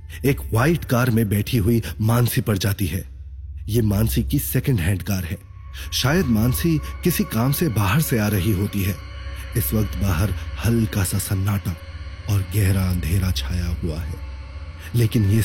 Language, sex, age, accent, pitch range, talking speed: Hindi, male, 30-49, native, 85-115 Hz, 165 wpm